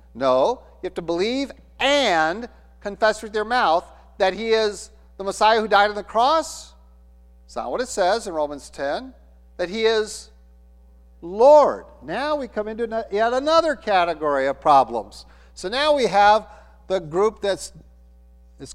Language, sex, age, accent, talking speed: English, male, 50-69, American, 155 wpm